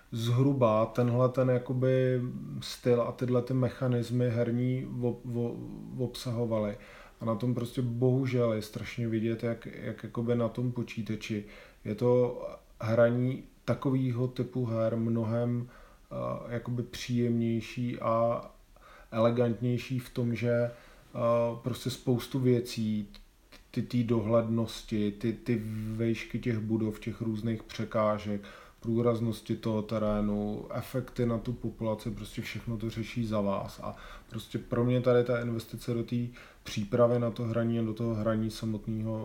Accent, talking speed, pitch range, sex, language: native, 125 wpm, 110-120 Hz, male, Czech